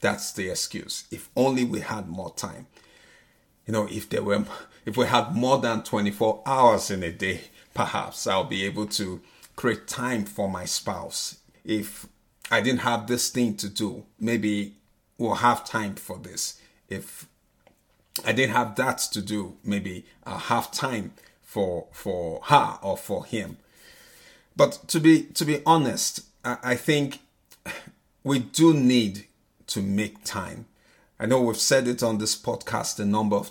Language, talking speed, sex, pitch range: English, 165 wpm, male, 105-125 Hz